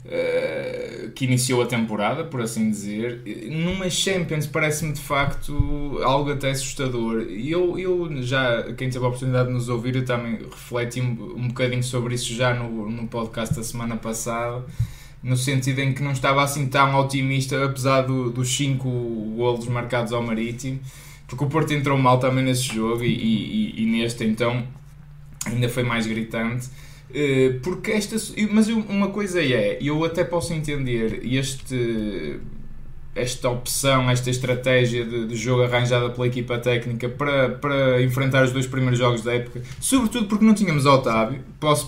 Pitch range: 120-140 Hz